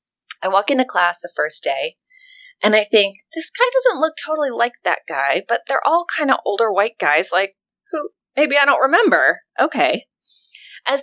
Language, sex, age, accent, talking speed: English, female, 30-49, American, 185 wpm